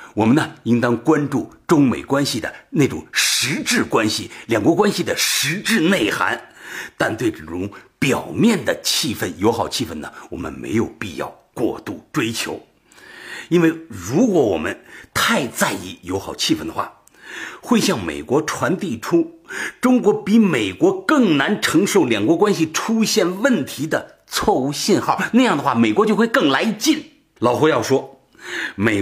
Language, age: Chinese, 50-69